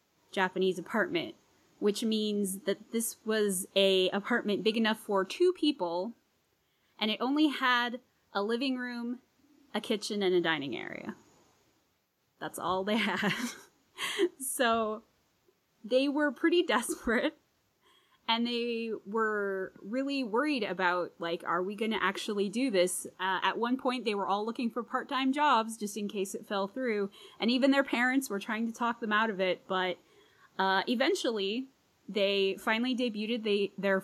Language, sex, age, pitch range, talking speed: English, female, 20-39, 200-265 Hz, 150 wpm